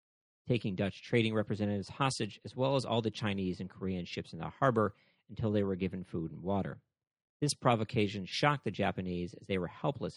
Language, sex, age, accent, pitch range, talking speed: English, male, 40-59, American, 90-115 Hz, 195 wpm